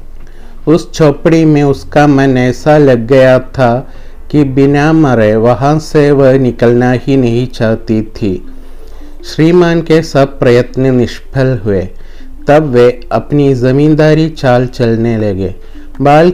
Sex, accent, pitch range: male, native, 120-145 Hz